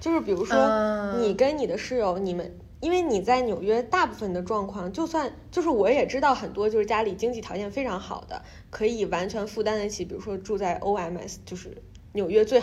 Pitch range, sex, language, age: 185-235 Hz, female, Chinese, 20-39